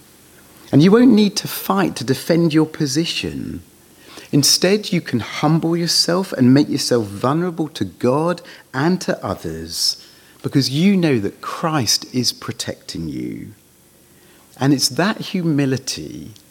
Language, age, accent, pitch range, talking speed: English, 40-59, British, 105-155 Hz, 130 wpm